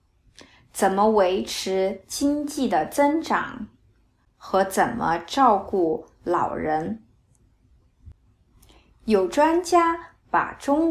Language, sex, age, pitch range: Chinese, female, 20-39, 185-275 Hz